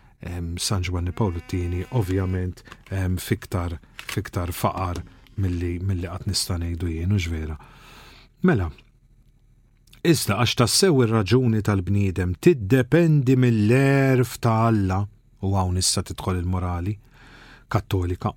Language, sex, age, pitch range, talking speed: English, male, 40-59, 95-130 Hz, 90 wpm